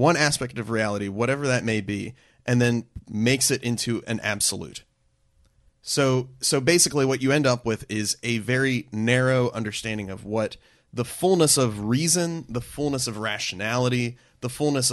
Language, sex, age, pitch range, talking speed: English, male, 30-49, 105-130 Hz, 160 wpm